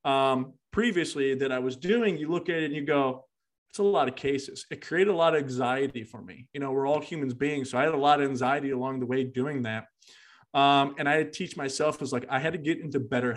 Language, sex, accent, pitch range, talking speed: English, male, American, 135-155 Hz, 265 wpm